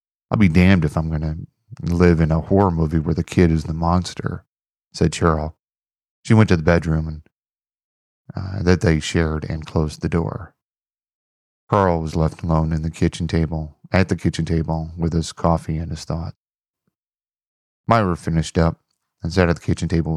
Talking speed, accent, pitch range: 180 wpm, American, 80-100 Hz